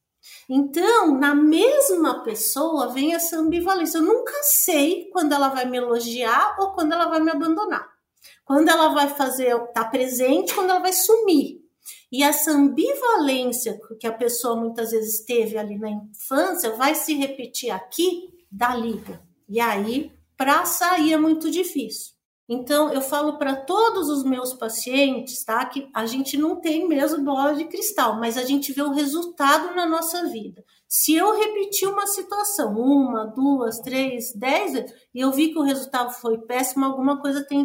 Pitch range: 255-335 Hz